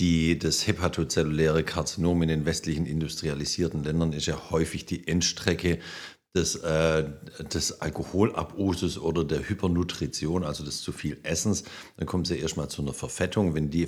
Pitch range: 75-85 Hz